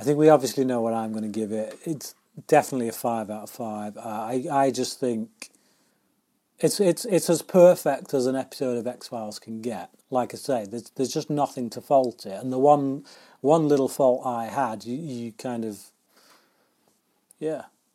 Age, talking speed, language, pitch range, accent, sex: 30-49, 195 wpm, English, 125-150 Hz, British, male